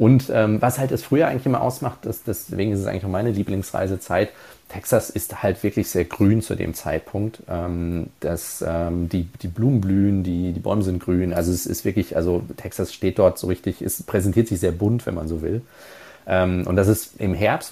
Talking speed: 215 wpm